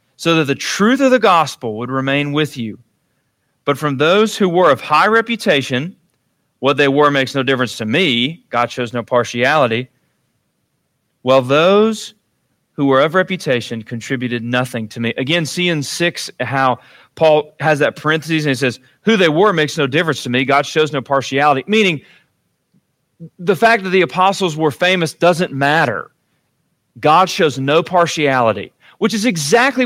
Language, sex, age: English, male, 40-59